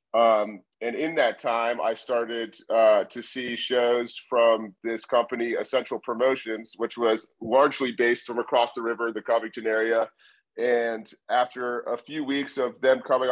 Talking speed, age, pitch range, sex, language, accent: 160 wpm, 30-49, 115-130 Hz, male, English, American